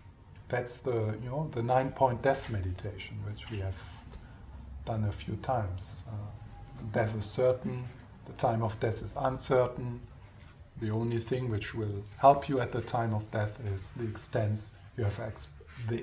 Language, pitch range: English, 105-125 Hz